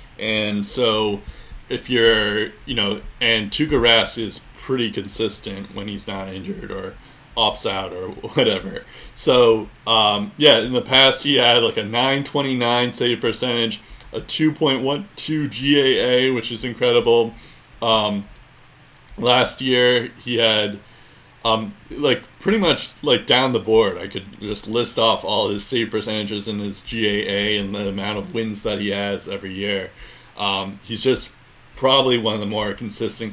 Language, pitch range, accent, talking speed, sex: English, 105-125 Hz, American, 150 wpm, male